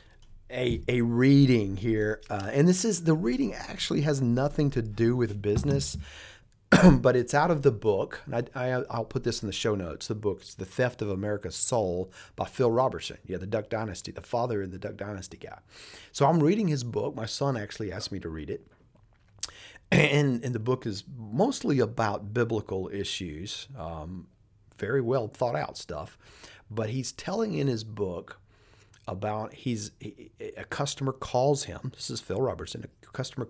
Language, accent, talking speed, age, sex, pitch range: English, American, 175 wpm, 40-59, male, 100-125 Hz